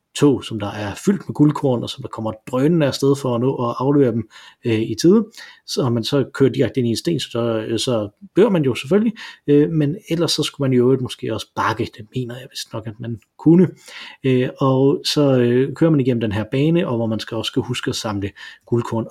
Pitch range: 110-145 Hz